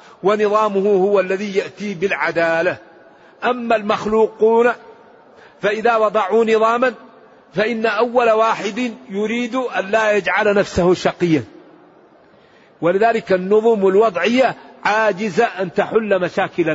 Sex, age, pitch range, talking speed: male, 50-69, 190-225 Hz, 95 wpm